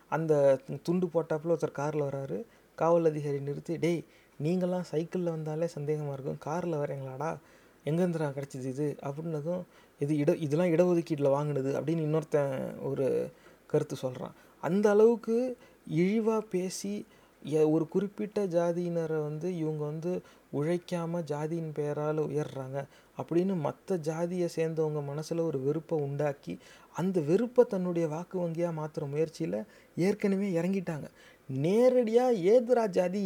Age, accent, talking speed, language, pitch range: 30-49, native, 115 wpm, Tamil, 155-180 Hz